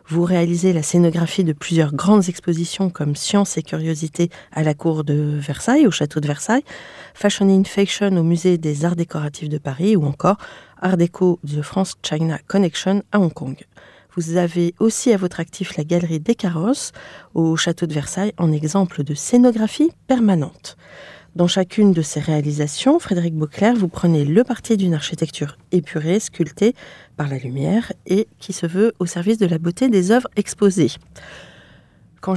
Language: French